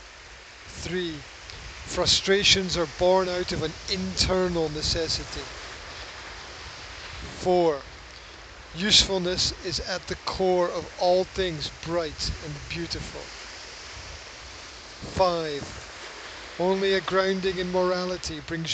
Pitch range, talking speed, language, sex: 150-185 Hz, 90 wpm, English, male